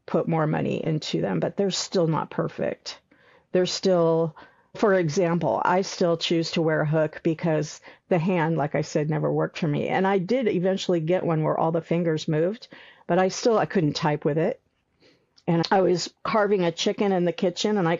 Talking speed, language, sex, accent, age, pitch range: 205 wpm, English, female, American, 50-69, 165-195 Hz